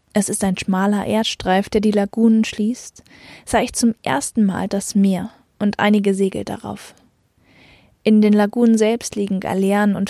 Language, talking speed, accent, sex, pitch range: German, 160 wpm, German, female, 200-225 Hz